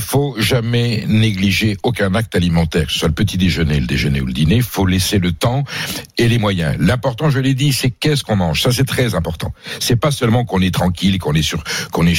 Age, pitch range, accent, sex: 60-79, 90-125 Hz, French, male